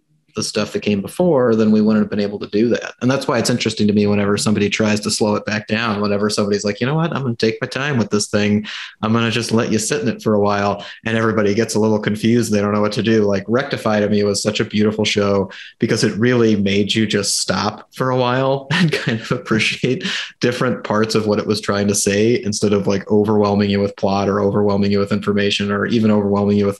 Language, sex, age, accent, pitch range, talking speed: English, male, 30-49, American, 105-120 Hz, 260 wpm